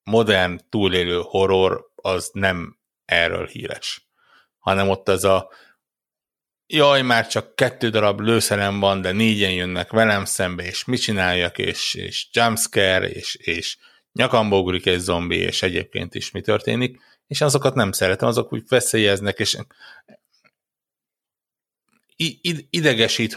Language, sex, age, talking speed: Hungarian, male, 60-79, 120 wpm